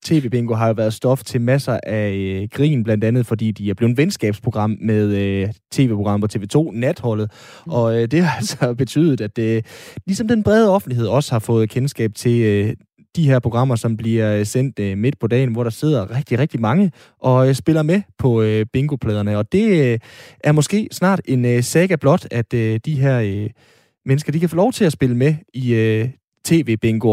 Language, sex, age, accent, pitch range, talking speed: Danish, male, 20-39, native, 110-150 Hz, 205 wpm